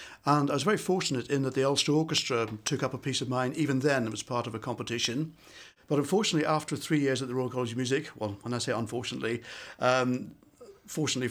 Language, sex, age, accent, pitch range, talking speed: English, male, 50-69, British, 120-145 Hz, 225 wpm